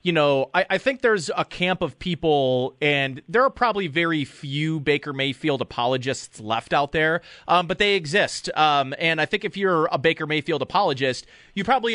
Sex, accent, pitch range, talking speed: male, American, 145-185 Hz, 190 wpm